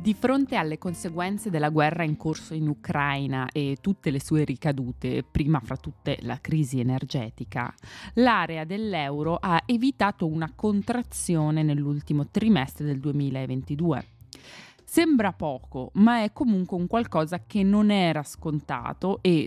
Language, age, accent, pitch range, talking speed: Italian, 20-39, native, 145-195 Hz, 135 wpm